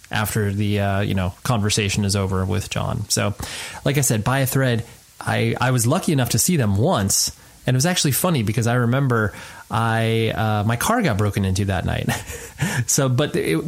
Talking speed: 200 wpm